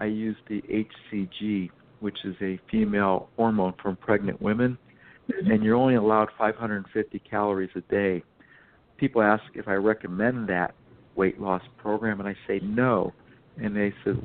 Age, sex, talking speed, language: 50-69, male, 150 wpm, English